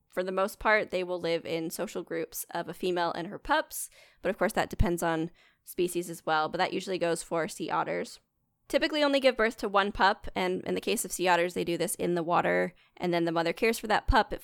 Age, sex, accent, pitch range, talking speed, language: 10-29, female, American, 165-195 Hz, 255 wpm, English